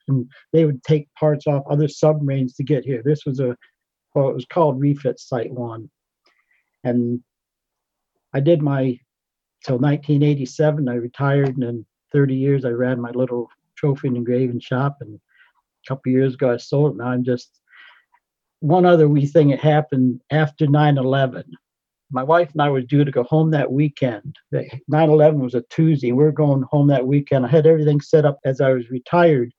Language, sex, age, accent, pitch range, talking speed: English, male, 60-79, American, 130-150 Hz, 185 wpm